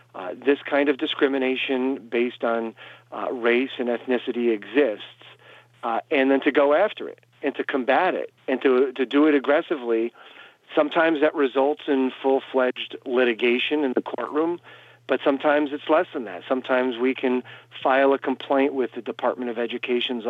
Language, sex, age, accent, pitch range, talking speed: English, male, 50-69, American, 120-145 Hz, 165 wpm